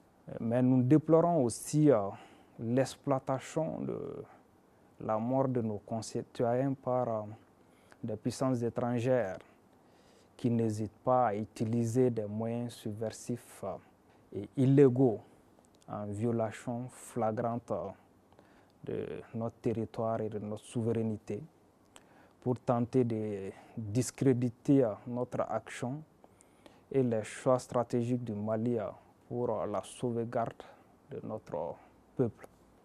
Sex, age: male, 30-49